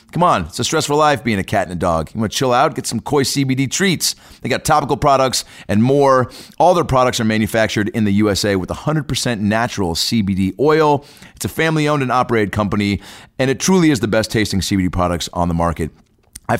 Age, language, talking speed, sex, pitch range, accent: 30-49, English, 215 wpm, male, 90-125 Hz, American